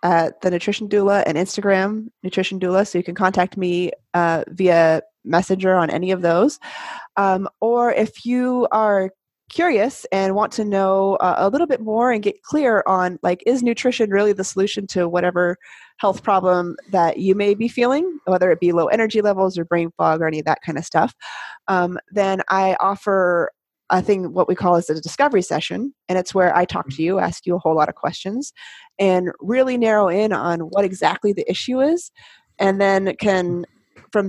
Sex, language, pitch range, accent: female, English, 175-210 Hz, American